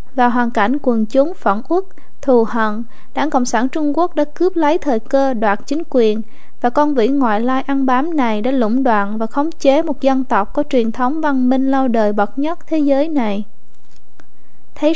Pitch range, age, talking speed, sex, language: 230-290 Hz, 20-39, 210 wpm, female, Vietnamese